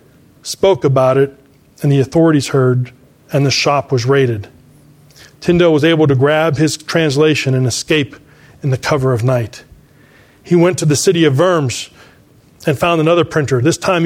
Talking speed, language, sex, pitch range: 165 wpm, English, male, 140-180 Hz